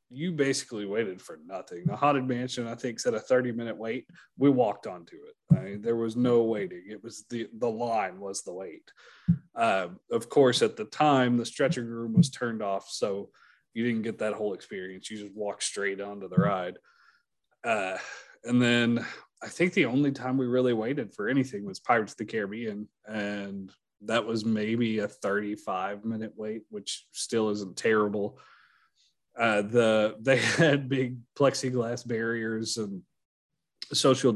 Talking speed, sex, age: 170 wpm, male, 30-49